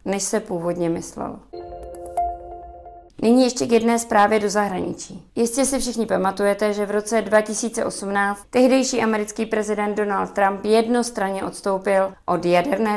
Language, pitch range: Czech, 190-225 Hz